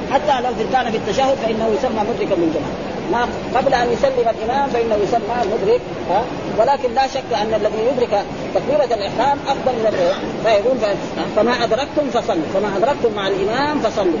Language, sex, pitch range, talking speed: Arabic, female, 215-265 Hz, 165 wpm